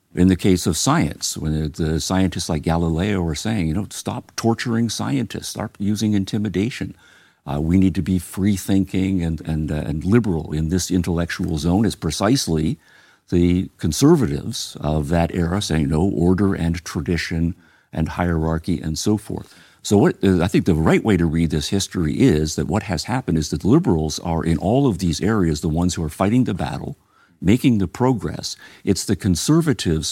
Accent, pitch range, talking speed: American, 80-100 Hz, 185 wpm